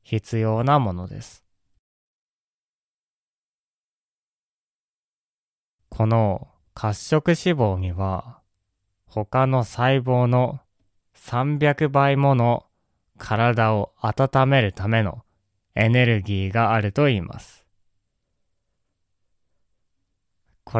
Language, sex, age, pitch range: Japanese, male, 20-39, 95-125 Hz